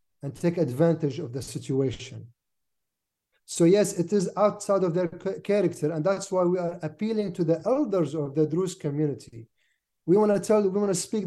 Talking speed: 175 wpm